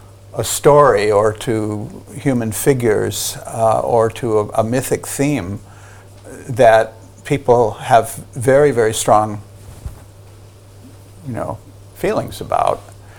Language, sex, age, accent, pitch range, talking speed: English, male, 50-69, American, 100-125 Hz, 105 wpm